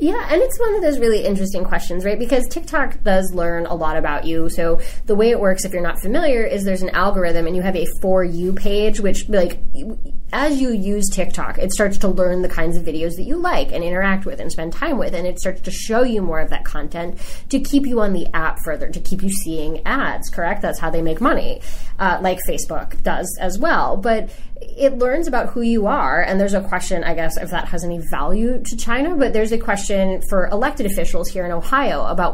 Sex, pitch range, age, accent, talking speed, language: female, 170-230 Hz, 20-39, American, 235 wpm, English